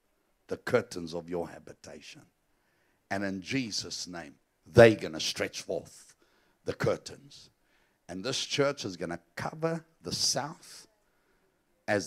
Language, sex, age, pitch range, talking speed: English, male, 60-79, 95-125 Hz, 130 wpm